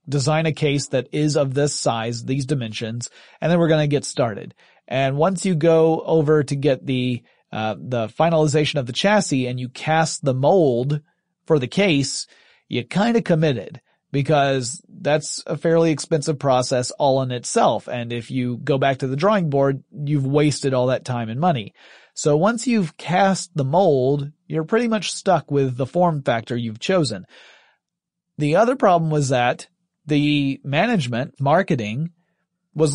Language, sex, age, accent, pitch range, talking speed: English, male, 30-49, American, 135-175 Hz, 170 wpm